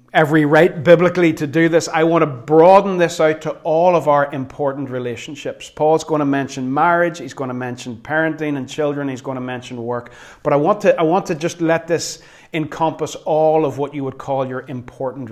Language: English